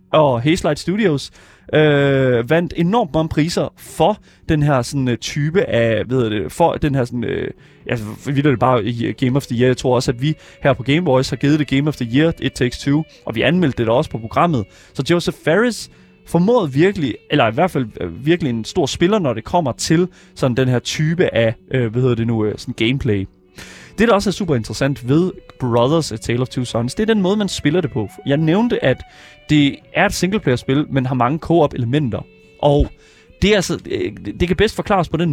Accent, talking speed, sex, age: native, 215 wpm, male, 20-39